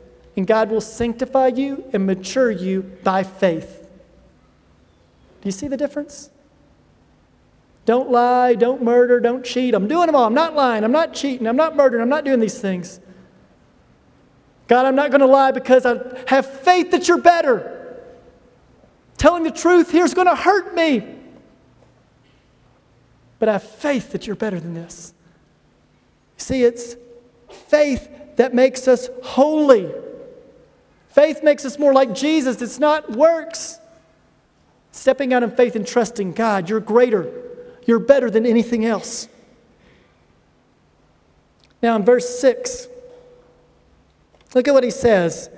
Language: English